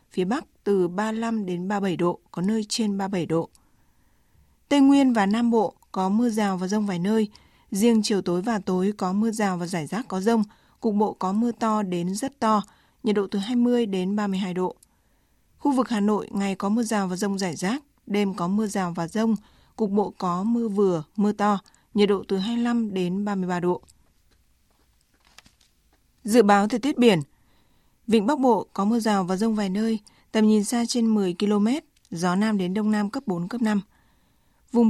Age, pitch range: 20-39, 190-225 Hz